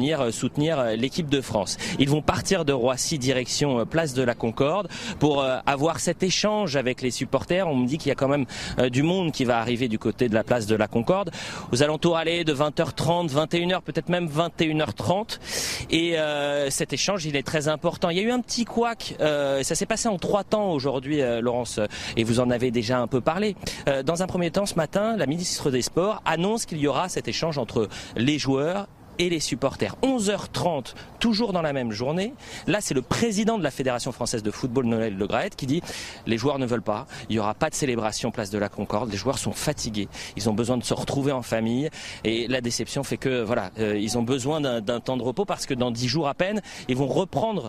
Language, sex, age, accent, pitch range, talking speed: French, male, 30-49, French, 120-170 Hz, 230 wpm